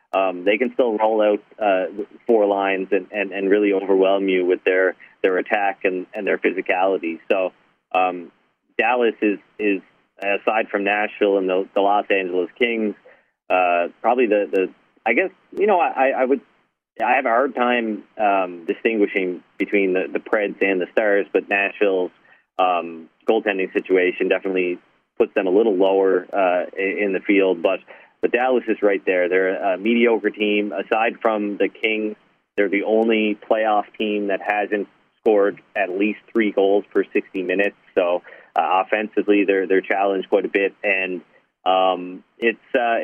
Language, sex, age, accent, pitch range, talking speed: English, male, 30-49, American, 95-105 Hz, 165 wpm